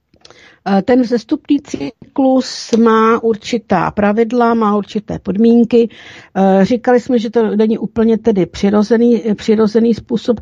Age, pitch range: 60-79, 190-225 Hz